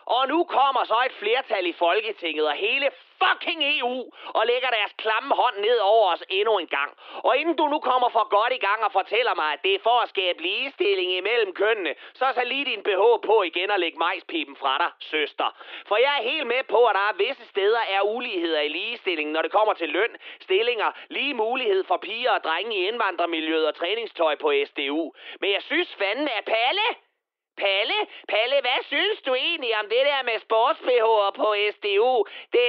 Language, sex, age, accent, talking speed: Danish, male, 30-49, native, 200 wpm